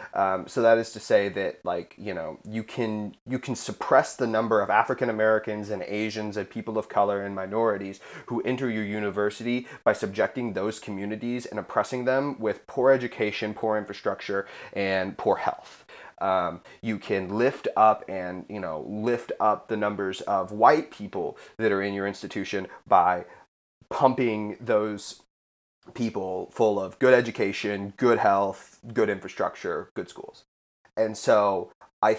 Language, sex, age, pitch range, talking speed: English, male, 30-49, 105-125 Hz, 155 wpm